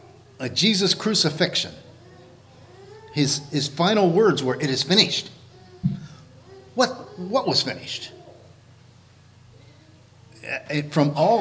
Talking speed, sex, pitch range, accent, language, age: 90 wpm, male, 120-155 Hz, American, English, 50-69